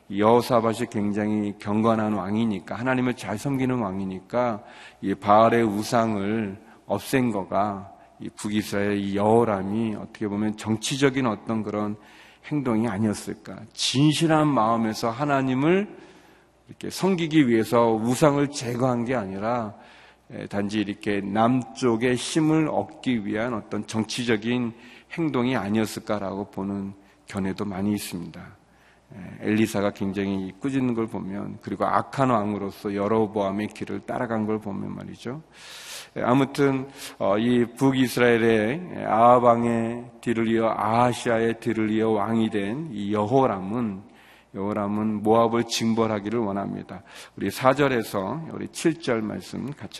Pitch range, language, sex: 105-125 Hz, Korean, male